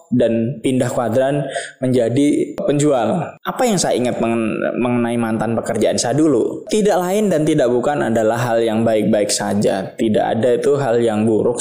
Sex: male